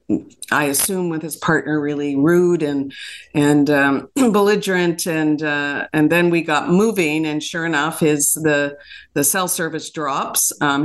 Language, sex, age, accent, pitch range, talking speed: English, female, 50-69, American, 150-175 Hz, 155 wpm